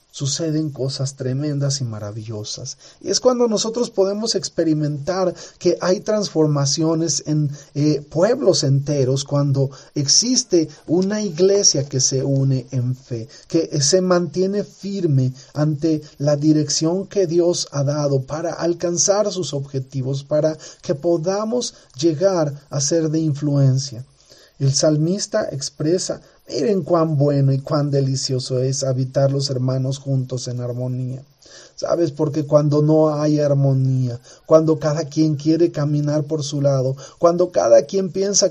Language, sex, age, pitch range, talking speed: Spanish, male, 40-59, 140-180 Hz, 130 wpm